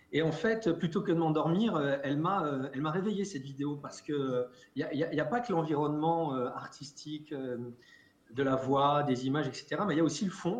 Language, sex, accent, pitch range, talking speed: French, male, French, 145-185 Hz, 220 wpm